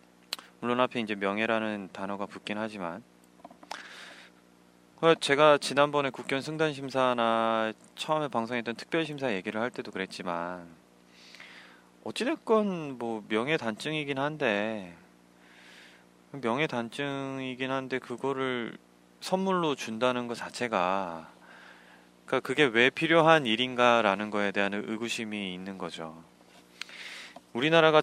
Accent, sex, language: native, male, Korean